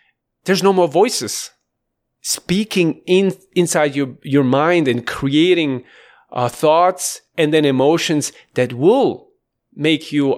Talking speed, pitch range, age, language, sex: 120 wpm, 130-170 Hz, 40-59, English, male